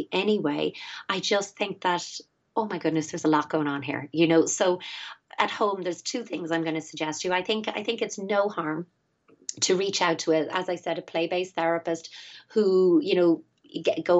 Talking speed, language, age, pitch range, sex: 210 wpm, English, 30-49, 160-185 Hz, female